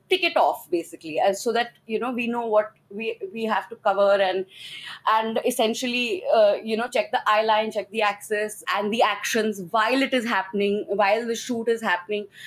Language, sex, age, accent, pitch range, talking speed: English, female, 20-39, Indian, 215-265 Hz, 195 wpm